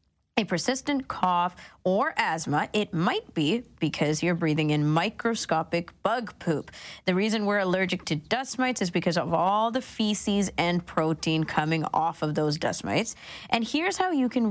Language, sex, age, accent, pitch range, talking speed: English, female, 20-39, American, 170-220 Hz, 170 wpm